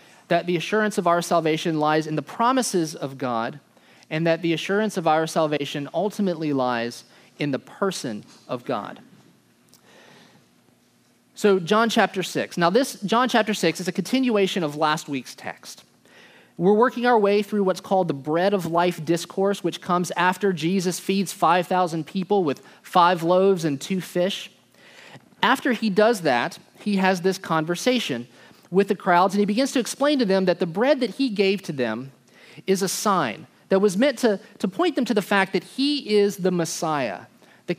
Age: 30-49